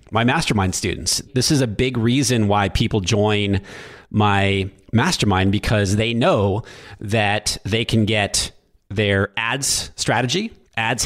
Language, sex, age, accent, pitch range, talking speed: English, male, 30-49, American, 100-125 Hz, 130 wpm